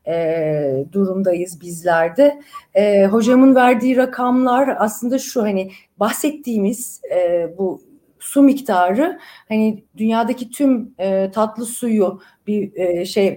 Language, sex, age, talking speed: Turkish, female, 40-59, 105 wpm